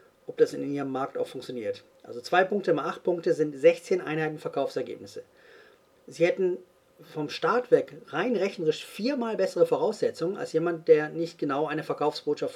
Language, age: English, 40-59